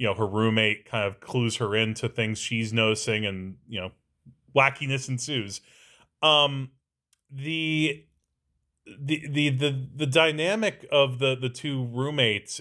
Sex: male